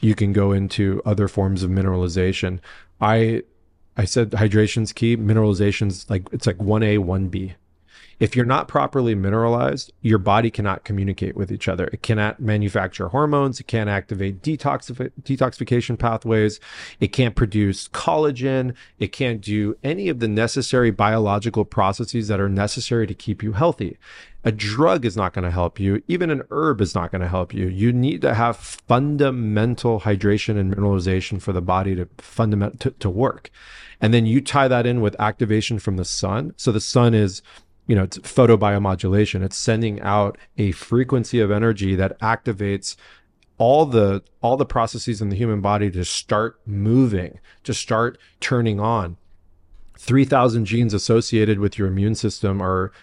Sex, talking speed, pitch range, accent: male, 165 wpm, 100-120 Hz, American